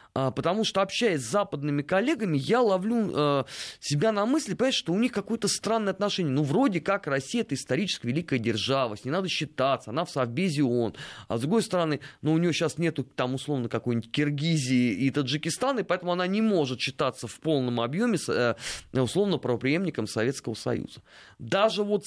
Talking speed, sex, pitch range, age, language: 175 wpm, male, 130-195 Hz, 20-39, Russian